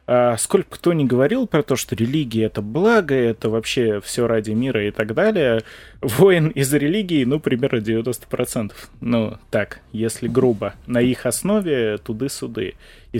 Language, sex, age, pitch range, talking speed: Russian, male, 20-39, 110-140 Hz, 150 wpm